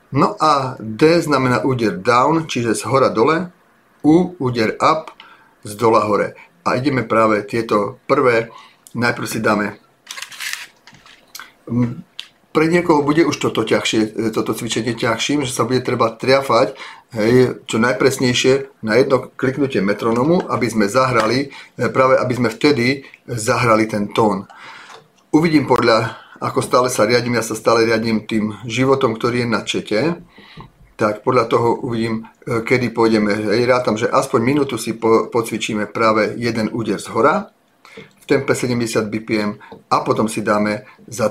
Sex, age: male, 40-59